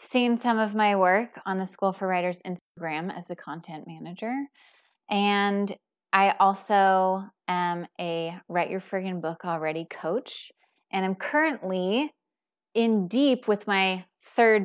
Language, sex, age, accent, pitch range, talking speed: English, female, 20-39, American, 170-210 Hz, 140 wpm